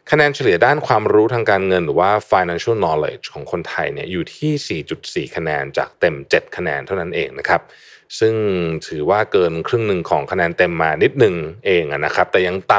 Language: Thai